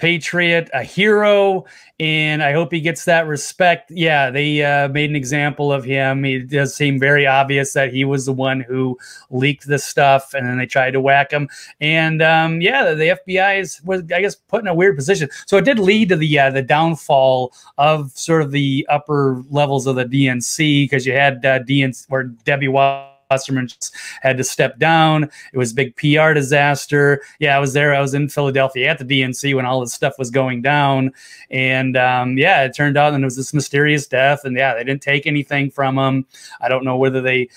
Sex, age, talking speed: male, 30-49, 210 wpm